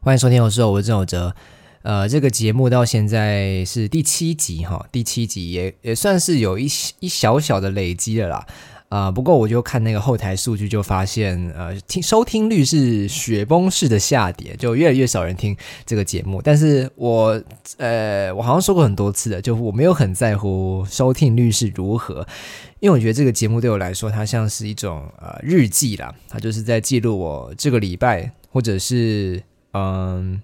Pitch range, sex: 100-130 Hz, male